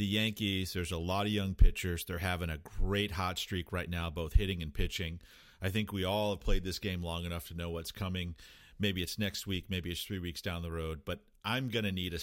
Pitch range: 85-105 Hz